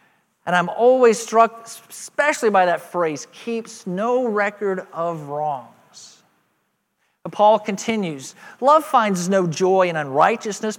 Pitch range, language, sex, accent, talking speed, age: 185-255 Hz, English, male, American, 115 wpm, 40-59